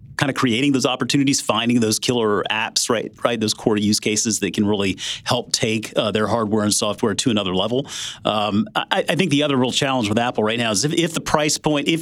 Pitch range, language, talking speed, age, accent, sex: 110-150 Hz, English, 210 wpm, 40-59, American, male